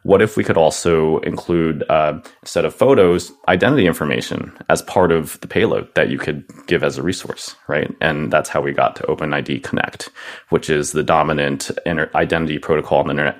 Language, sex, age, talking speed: English, male, 30-49, 190 wpm